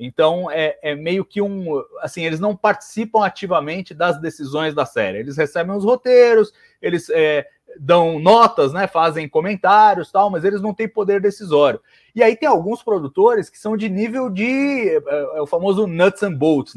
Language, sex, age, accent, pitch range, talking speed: Portuguese, male, 30-49, Brazilian, 145-210 Hz, 180 wpm